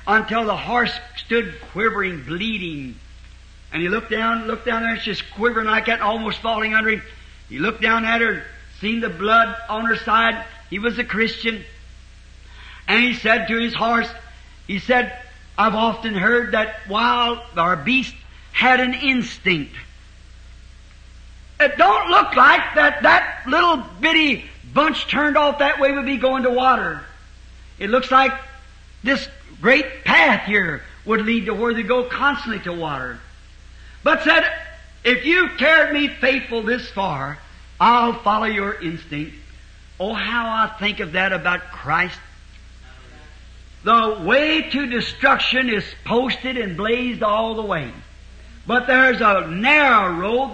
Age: 50-69